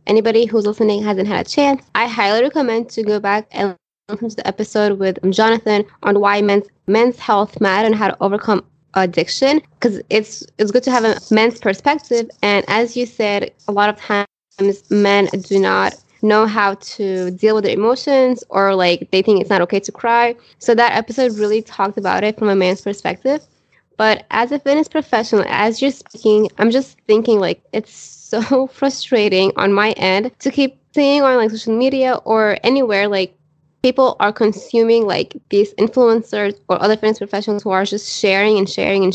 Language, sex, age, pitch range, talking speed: English, female, 20-39, 195-230 Hz, 185 wpm